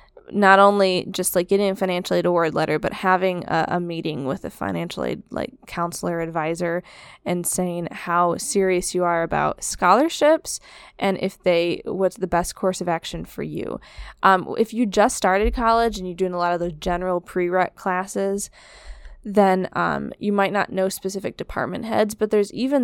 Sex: female